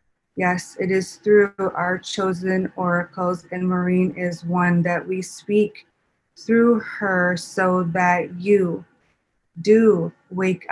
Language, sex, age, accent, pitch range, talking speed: English, female, 30-49, American, 170-190 Hz, 120 wpm